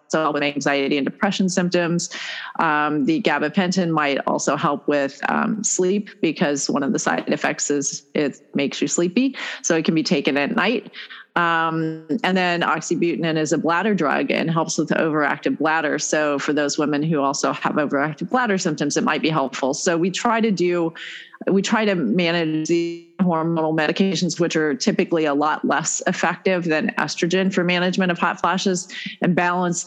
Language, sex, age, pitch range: English, female, 30-49, 150-185 Hz